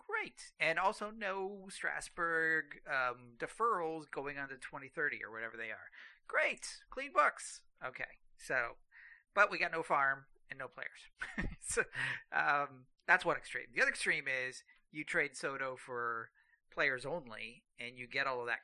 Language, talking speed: English, 160 wpm